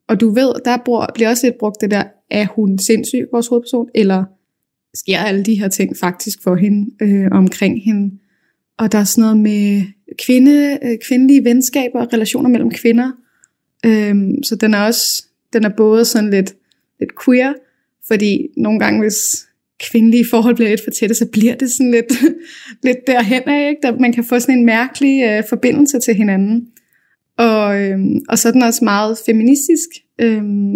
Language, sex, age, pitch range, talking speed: Danish, female, 20-39, 200-240 Hz, 180 wpm